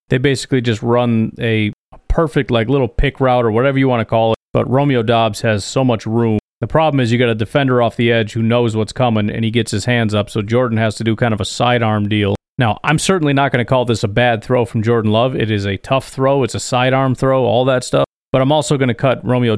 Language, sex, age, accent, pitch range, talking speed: English, male, 30-49, American, 115-140 Hz, 265 wpm